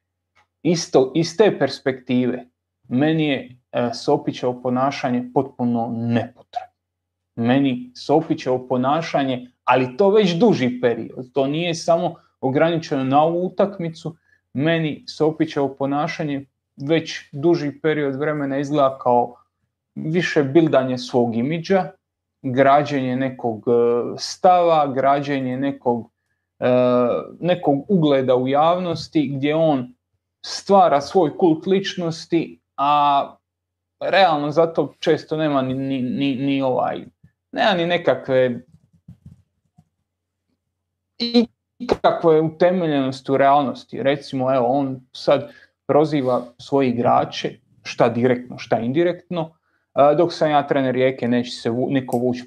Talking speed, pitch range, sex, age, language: 105 wpm, 125-160 Hz, male, 30-49, Croatian